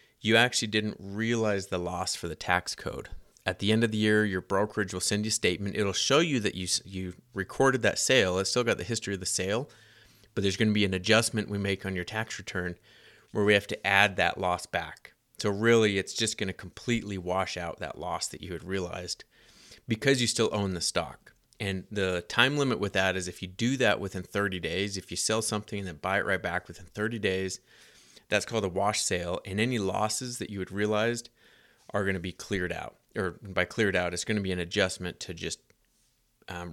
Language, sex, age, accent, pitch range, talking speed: English, male, 30-49, American, 90-110 Hz, 230 wpm